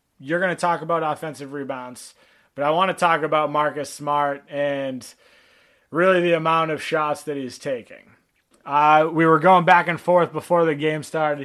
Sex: male